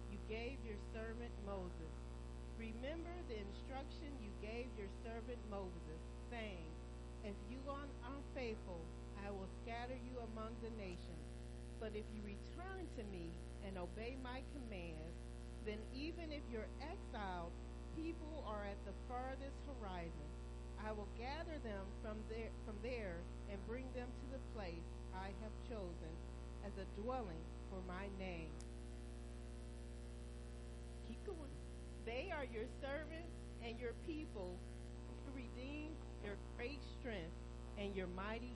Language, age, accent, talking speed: English, 40-59, American, 130 wpm